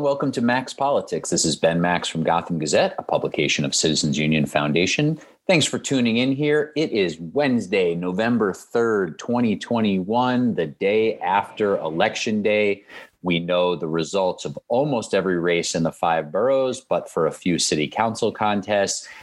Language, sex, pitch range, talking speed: English, male, 90-110 Hz, 160 wpm